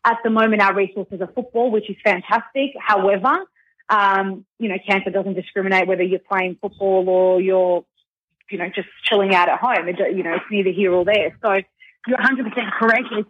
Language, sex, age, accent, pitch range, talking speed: English, female, 20-39, Australian, 185-215 Hz, 195 wpm